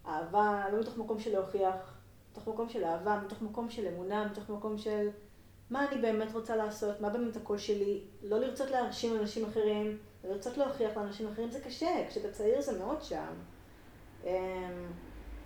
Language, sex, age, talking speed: Hebrew, female, 20-39, 165 wpm